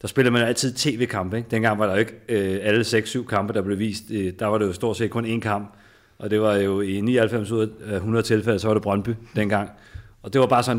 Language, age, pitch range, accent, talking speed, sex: Danish, 30-49, 100-115 Hz, native, 265 wpm, male